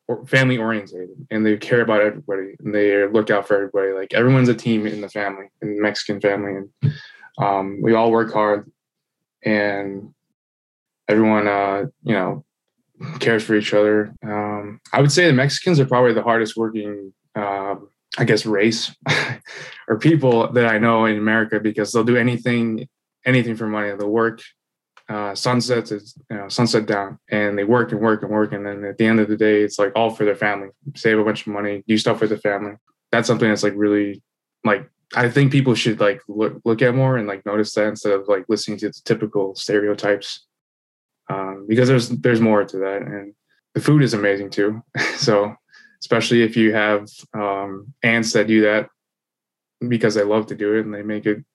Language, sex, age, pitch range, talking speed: English, male, 20-39, 105-115 Hz, 195 wpm